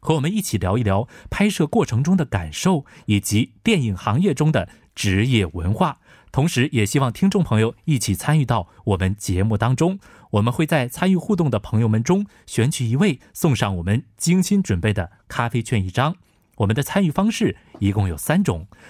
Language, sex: Korean, male